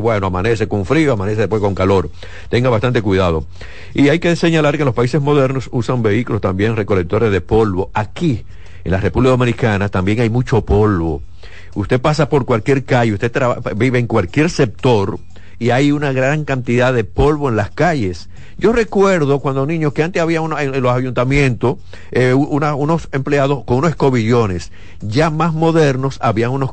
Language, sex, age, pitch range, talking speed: Spanish, male, 50-69, 100-135 Hz, 175 wpm